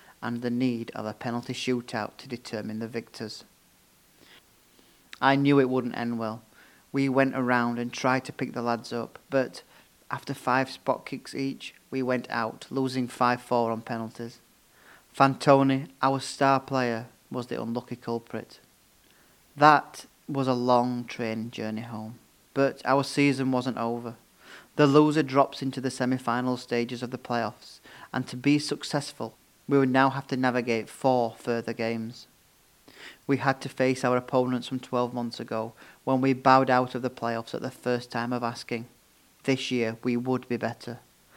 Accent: British